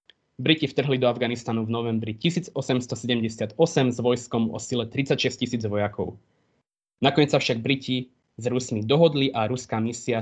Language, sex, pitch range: Slovak, male, 110-135 Hz